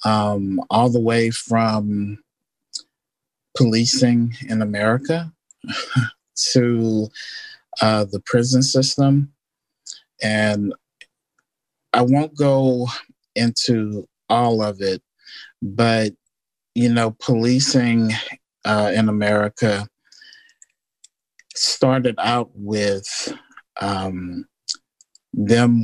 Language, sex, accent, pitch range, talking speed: English, male, American, 105-120 Hz, 75 wpm